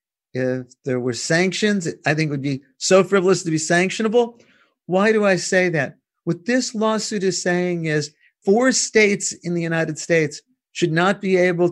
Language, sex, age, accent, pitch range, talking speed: English, male, 50-69, American, 145-185 Hz, 180 wpm